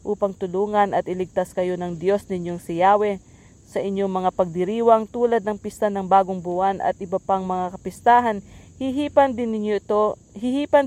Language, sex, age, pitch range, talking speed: English, female, 40-59, 190-225 Hz, 165 wpm